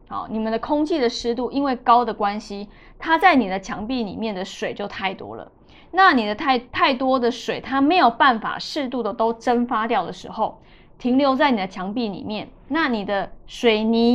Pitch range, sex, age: 205-255 Hz, female, 20-39